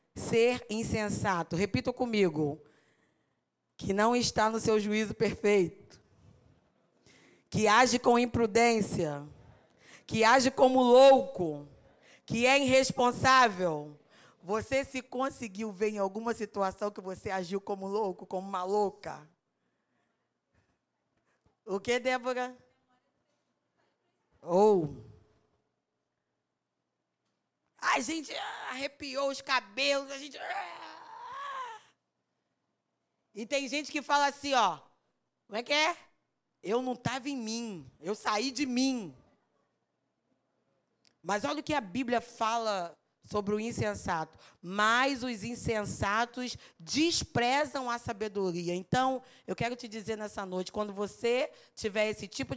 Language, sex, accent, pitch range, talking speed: Portuguese, female, Brazilian, 195-255 Hz, 110 wpm